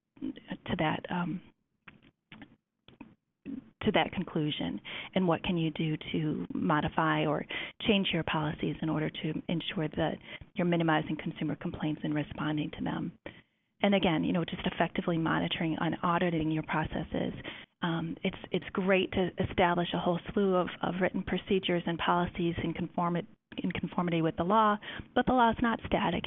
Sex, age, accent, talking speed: female, 30-49, American, 155 wpm